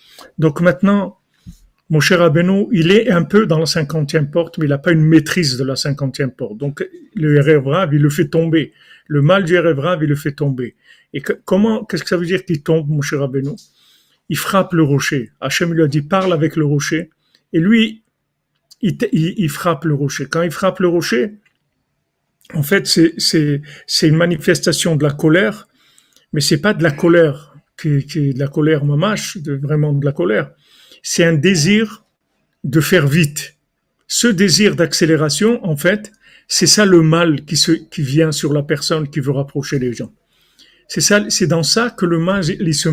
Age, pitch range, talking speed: 50-69, 150-180 Hz, 195 wpm